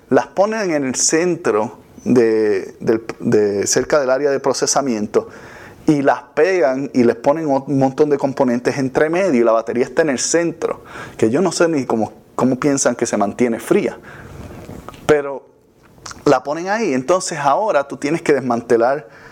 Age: 30-49